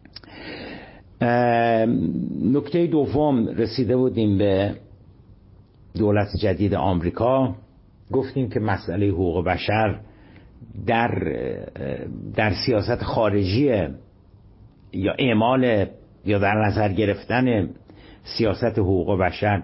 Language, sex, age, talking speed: Persian, male, 60-79, 80 wpm